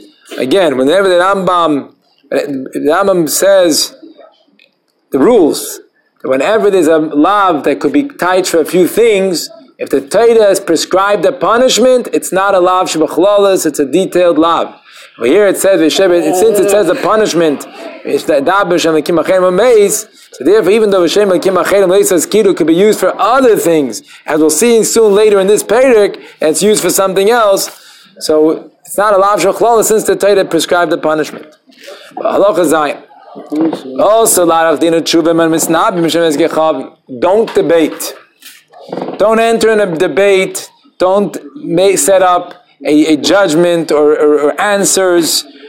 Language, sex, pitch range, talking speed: English, male, 165-215 Hz, 140 wpm